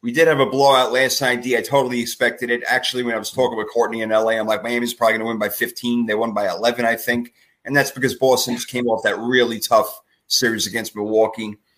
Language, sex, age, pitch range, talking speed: English, male, 30-49, 115-145 Hz, 250 wpm